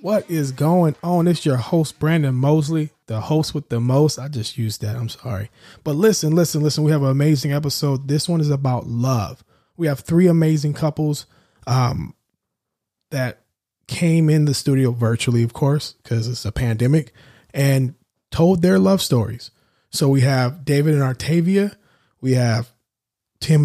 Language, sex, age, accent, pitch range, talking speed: English, male, 20-39, American, 130-160 Hz, 165 wpm